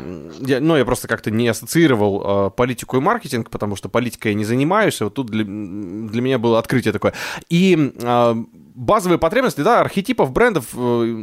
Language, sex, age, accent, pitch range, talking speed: Russian, male, 20-39, native, 115-160 Hz, 180 wpm